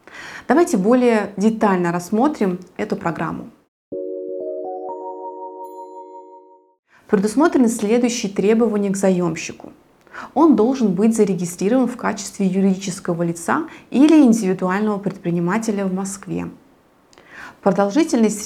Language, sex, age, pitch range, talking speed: Russian, female, 20-39, 185-240 Hz, 80 wpm